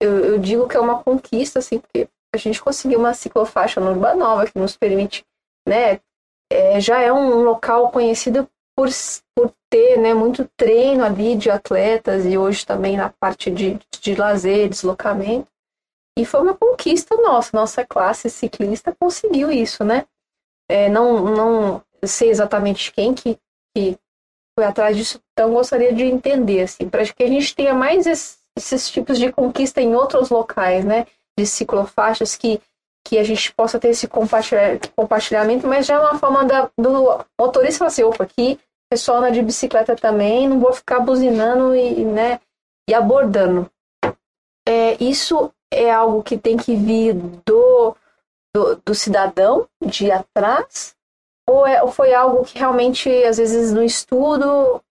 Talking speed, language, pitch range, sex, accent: 160 wpm, Portuguese, 215-260 Hz, female, Brazilian